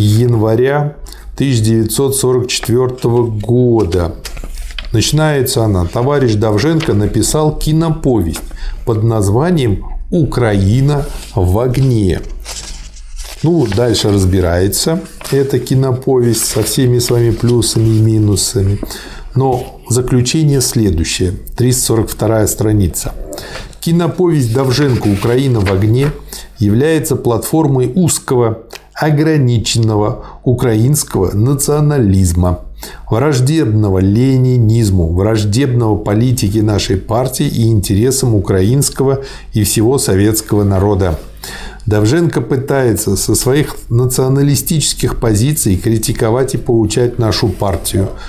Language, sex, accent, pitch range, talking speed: Russian, male, native, 105-135 Hz, 80 wpm